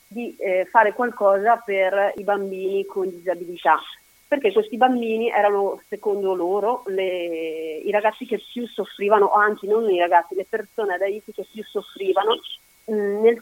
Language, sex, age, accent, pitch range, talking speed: Italian, female, 30-49, native, 190-230 Hz, 145 wpm